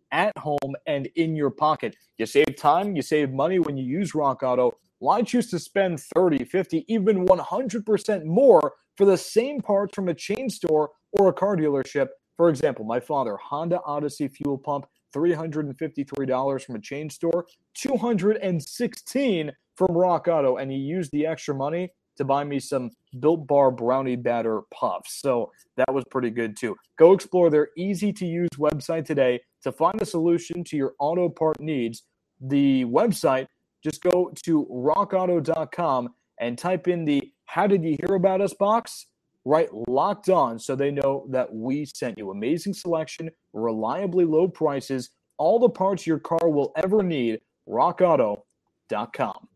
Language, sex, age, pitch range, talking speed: English, male, 20-39, 135-185 Hz, 155 wpm